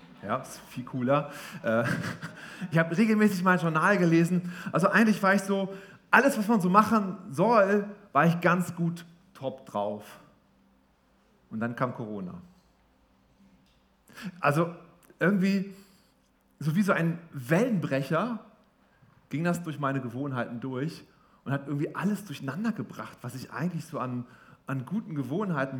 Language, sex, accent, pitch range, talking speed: German, male, German, 130-180 Hz, 135 wpm